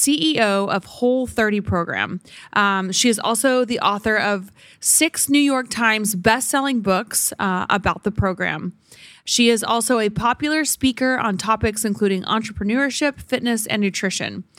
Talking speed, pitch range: 140 wpm, 190-235 Hz